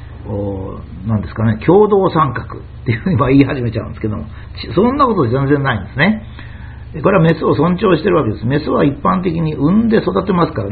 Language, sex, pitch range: Japanese, male, 110-165 Hz